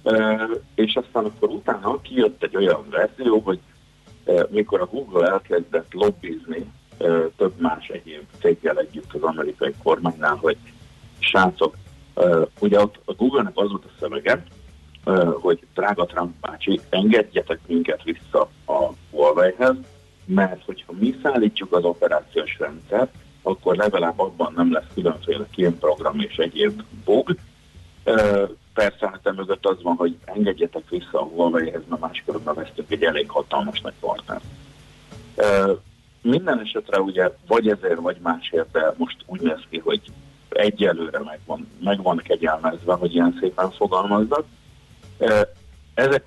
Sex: male